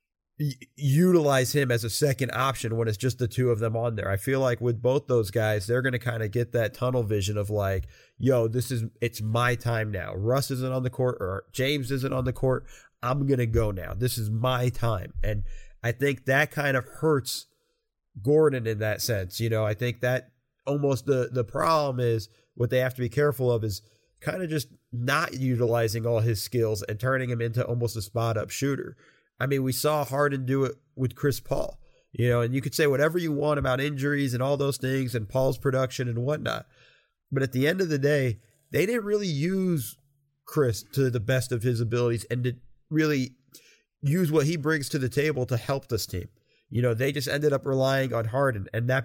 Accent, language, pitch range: American, English, 115-140 Hz